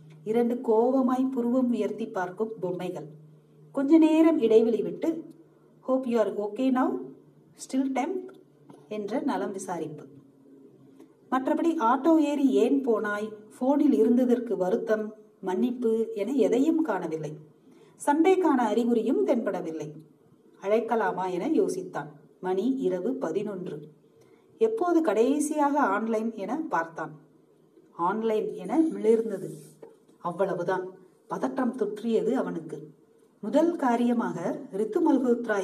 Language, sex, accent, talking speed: Tamil, female, native, 85 wpm